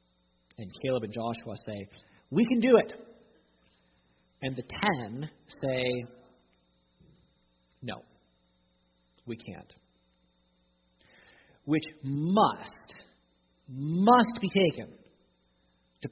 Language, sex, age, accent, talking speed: English, male, 40-59, American, 80 wpm